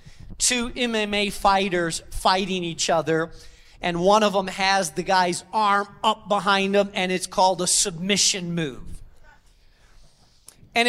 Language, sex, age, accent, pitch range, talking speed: English, male, 40-59, American, 180-230 Hz, 130 wpm